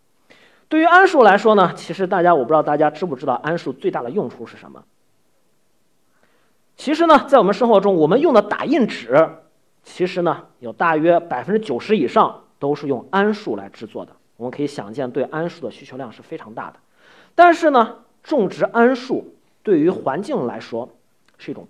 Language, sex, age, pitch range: Chinese, male, 40-59, 150-235 Hz